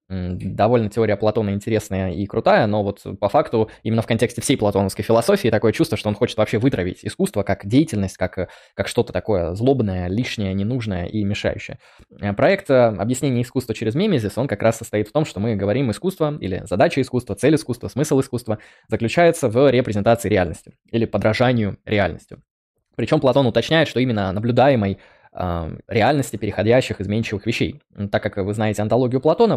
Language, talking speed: Russian, 160 wpm